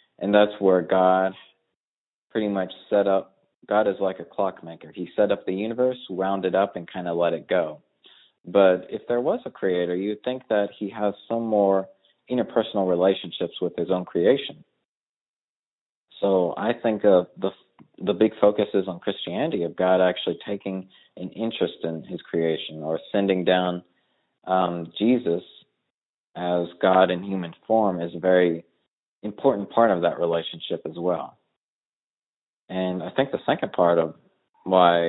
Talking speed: 160 wpm